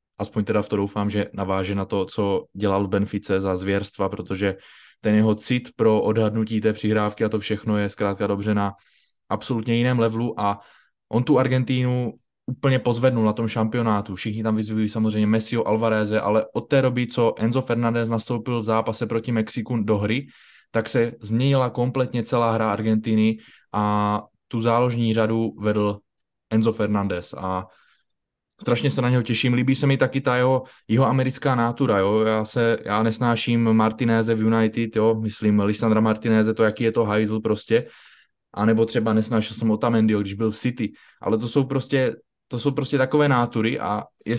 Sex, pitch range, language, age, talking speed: male, 105-120 Hz, Czech, 20-39, 175 wpm